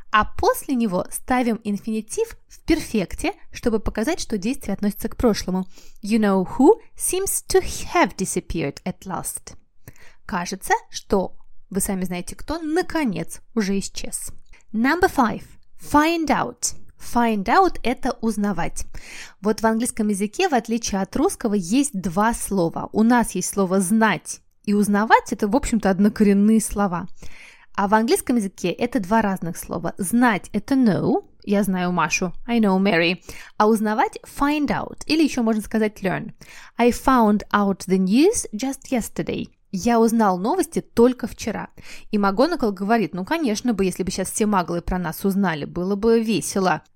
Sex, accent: female, native